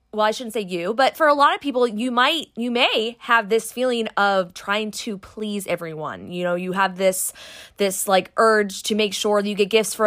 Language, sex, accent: English, female, American